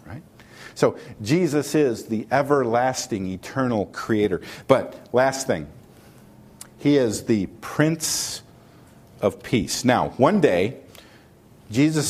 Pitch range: 120-160 Hz